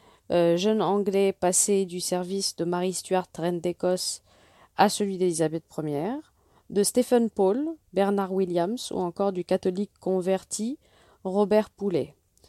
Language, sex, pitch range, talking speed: French, female, 170-210 Hz, 130 wpm